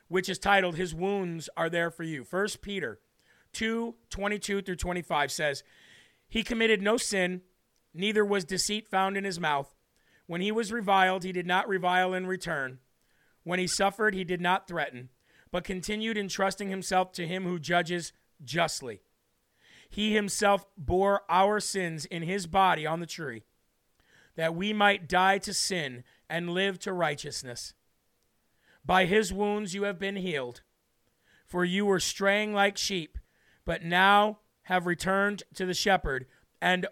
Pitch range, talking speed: 170-200 Hz, 155 wpm